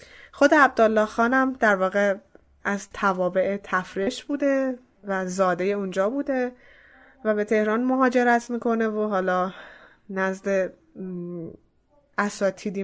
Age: 20-39